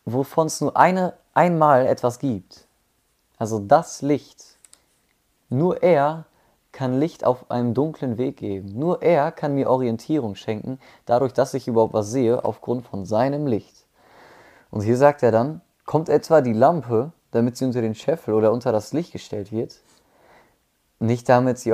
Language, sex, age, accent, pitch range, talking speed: German, male, 20-39, German, 110-145 Hz, 155 wpm